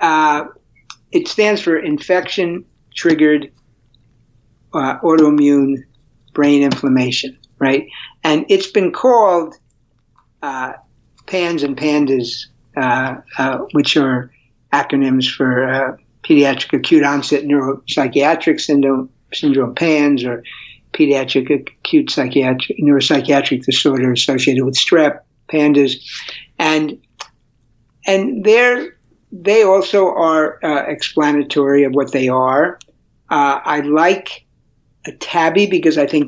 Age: 60-79